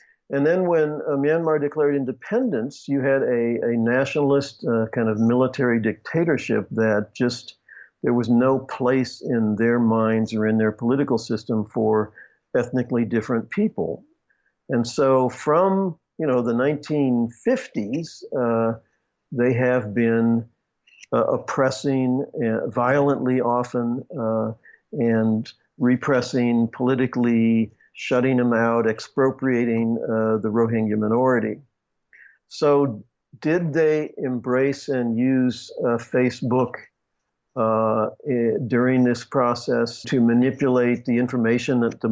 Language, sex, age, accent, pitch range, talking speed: English, male, 50-69, American, 115-135 Hz, 115 wpm